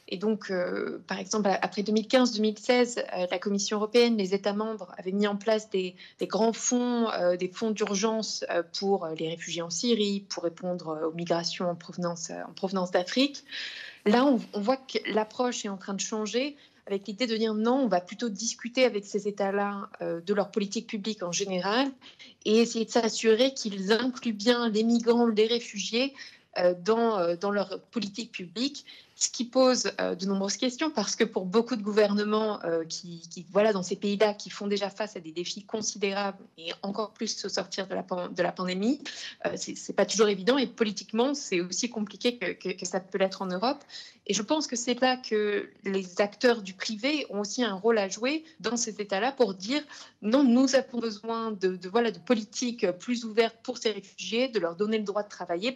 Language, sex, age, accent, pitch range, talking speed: French, female, 20-39, French, 195-235 Hz, 195 wpm